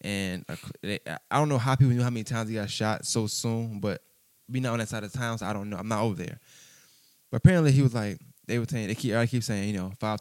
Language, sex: English, male